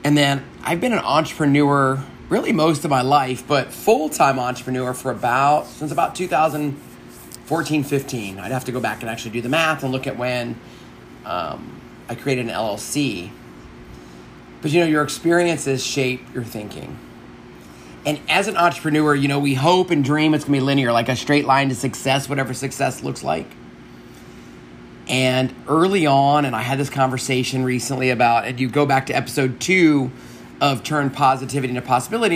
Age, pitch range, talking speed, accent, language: 30-49, 110-150 Hz, 175 wpm, American, English